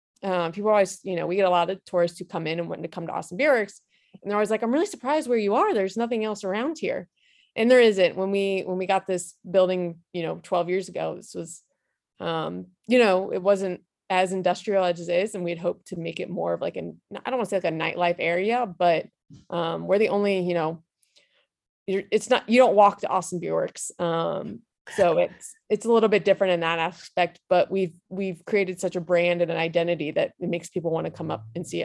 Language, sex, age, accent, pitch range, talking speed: English, female, 20-39, American, 175-210 Hz, 245 wpm